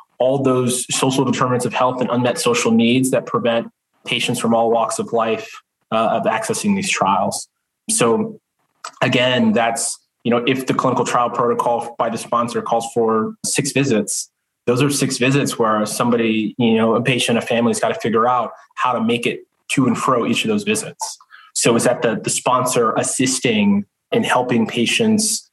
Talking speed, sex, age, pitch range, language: 185 wpm, male, 20-39, 110-150 Hz, English